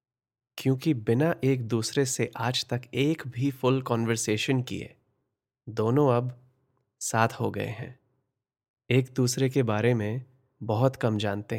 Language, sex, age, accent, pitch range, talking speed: Hindi, male, 30-49, native, 115-130 Hz, 135 wpm